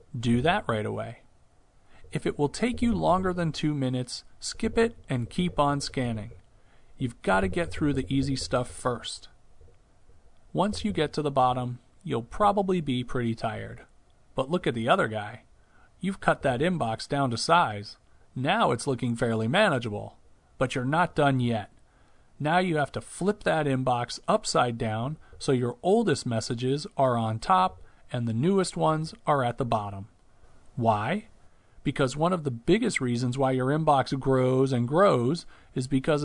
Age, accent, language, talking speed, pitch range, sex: 40-59, American, English, 165 wpm, 115-160 Hz, male